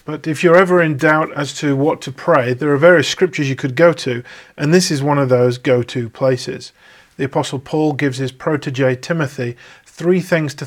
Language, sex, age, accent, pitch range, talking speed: English, male, 40-59, British, 130-155 Hz, 210 wpm